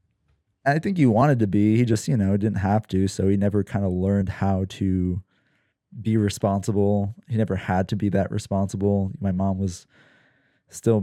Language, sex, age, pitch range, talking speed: English, male, 20-39, 95-115 Hz, 185 wpm